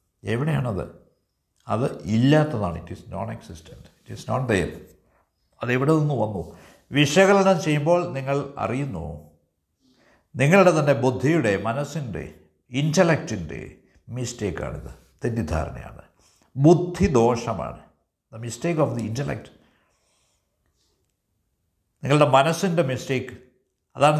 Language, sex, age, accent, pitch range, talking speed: Malayalam, male, 60-79, native, 90-145 Hz, 90 wpm